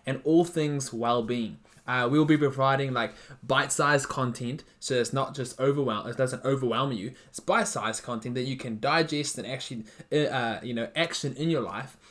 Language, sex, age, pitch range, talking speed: English, male, 20-39, 120-150 Hz, 180 wpm